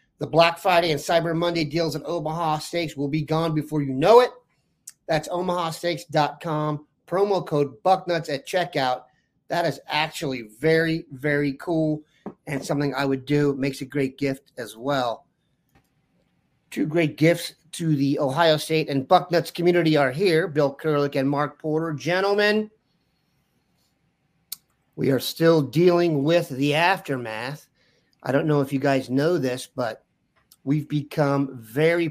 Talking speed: 150 wpm